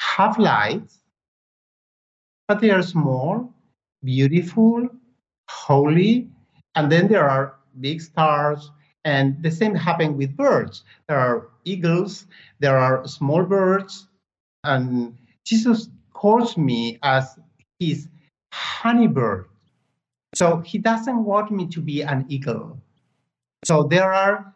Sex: male